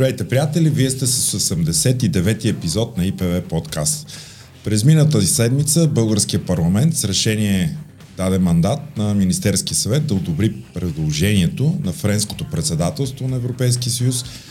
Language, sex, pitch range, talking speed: Bulgarian, male, 105-150 Hz, 130 wpm